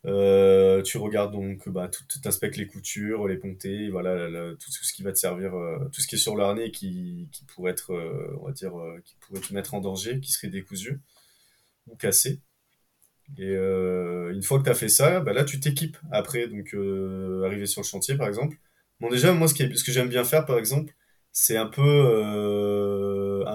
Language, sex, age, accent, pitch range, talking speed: French, male, 20-39, French, 100-140 Hz, 220 wpm